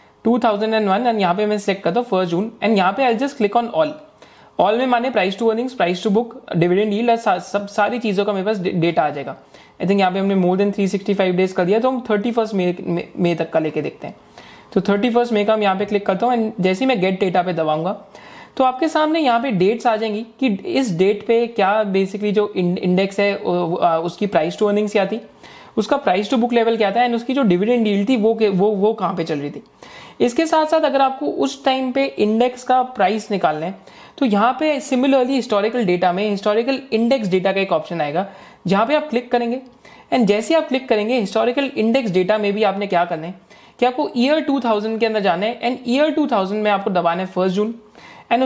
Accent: native